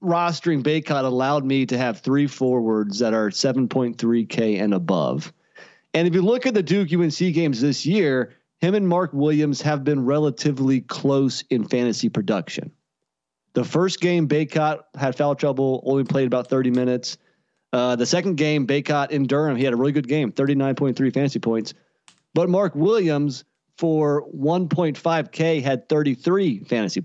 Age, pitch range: 30-49, 130-155 Hz